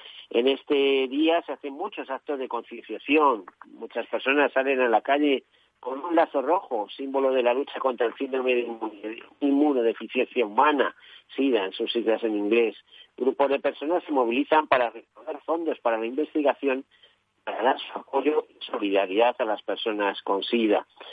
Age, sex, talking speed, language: 50-69, male, 165 wpm, Spanish